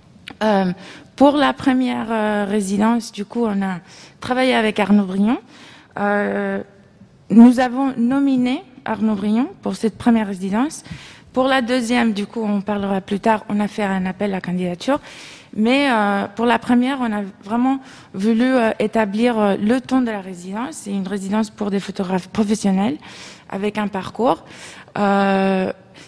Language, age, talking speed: French, 20-39, 160 wpm